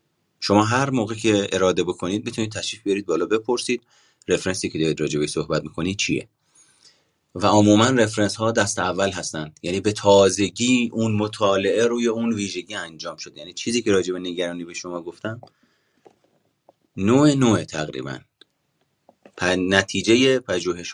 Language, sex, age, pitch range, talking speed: Persian, male, 30-49, 90-115 Hz, 140 wpm